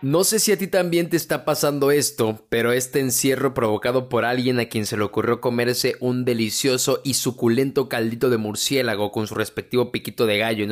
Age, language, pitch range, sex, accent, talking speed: 20-39, Spanish, 120-165 Hz, male, Mexican, 200 wpm